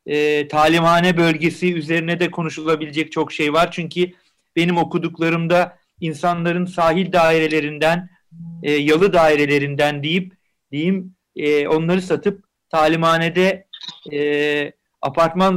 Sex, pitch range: male, 150-175 Hz